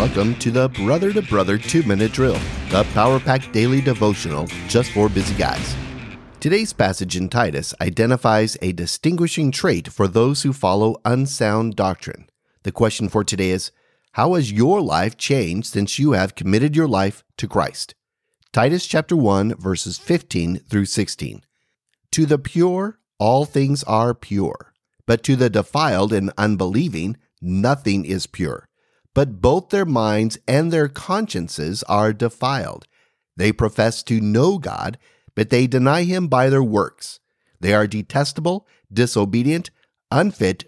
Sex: male